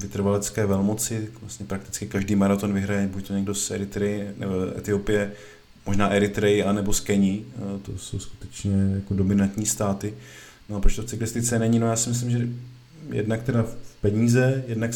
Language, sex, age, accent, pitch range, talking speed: Czech, male, 20-39, native, 105-115 Hz, 170 wpm